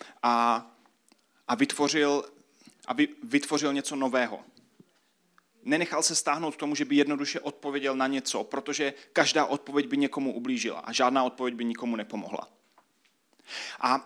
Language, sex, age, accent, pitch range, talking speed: Czech, male, 30-49, native, 120-150 Hz, 130 wpm